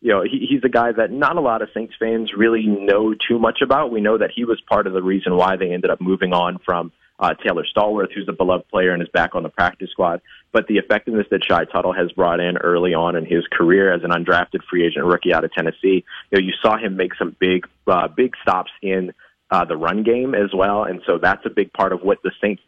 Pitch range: 95-115 Hz